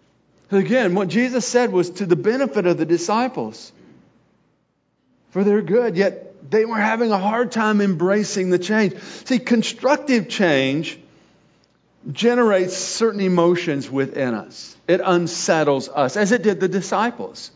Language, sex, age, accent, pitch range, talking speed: English, male, 40-59, American, 175-225 Hz, 135 wpm